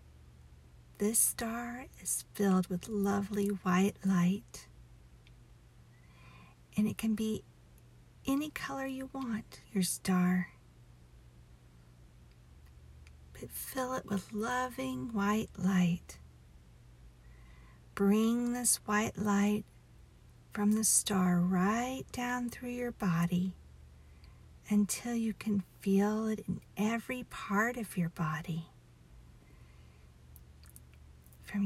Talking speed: 95 wpm